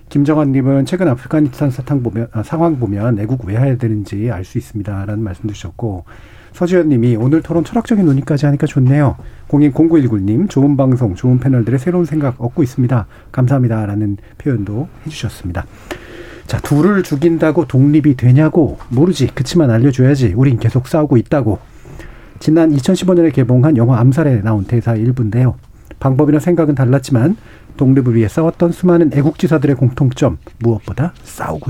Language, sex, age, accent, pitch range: Korean, male, 40-59, native, 115-155 Hz